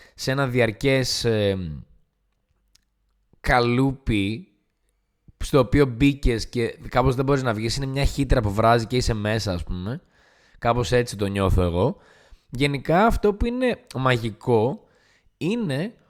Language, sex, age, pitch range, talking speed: Greek, male, 20-39, 105-145 Hz, 130 wpm